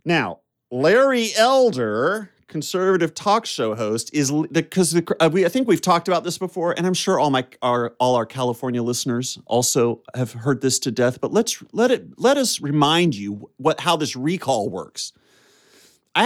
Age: 40-59